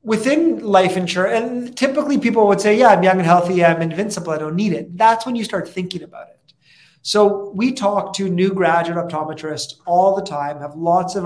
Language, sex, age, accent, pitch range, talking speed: English, male, 30-49, American, 155-195 Hz, 210 wpm